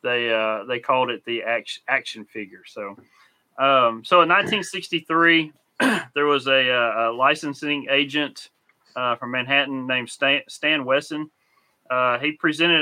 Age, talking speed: 30-49, 135 wpm